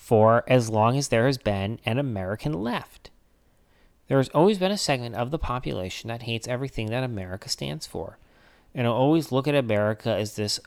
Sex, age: male, 30-49